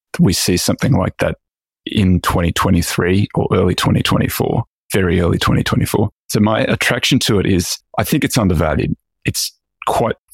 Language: English